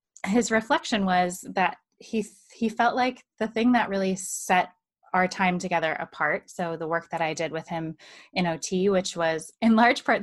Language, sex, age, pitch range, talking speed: English, female, 20-39, 170-210 Hz, 190 wpm